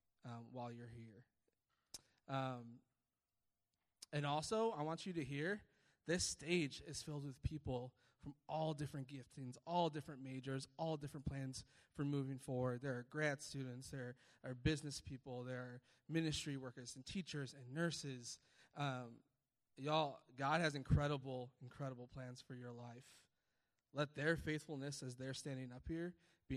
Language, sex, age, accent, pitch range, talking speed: English, male, 20-39, American, 125-145 Hz, 150 wpm